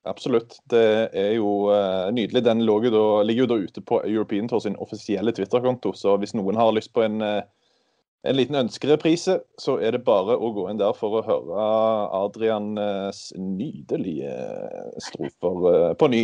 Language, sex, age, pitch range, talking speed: English, male, 30-49, 105-125 Hz, 185 wpm